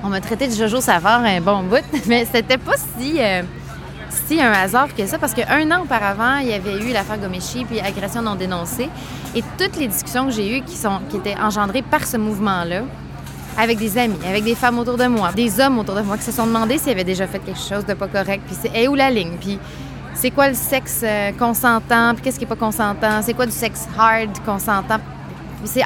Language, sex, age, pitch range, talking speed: French, female, 20-39, 200-245 Hz, 235 wpm